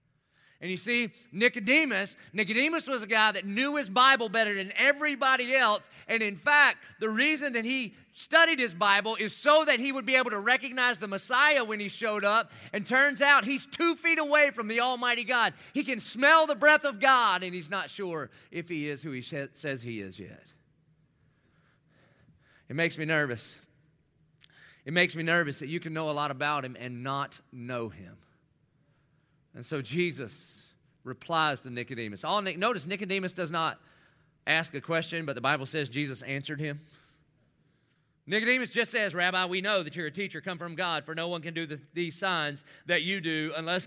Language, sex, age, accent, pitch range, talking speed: English, male, 30-49, American, 150-220 Hz, 185 wpm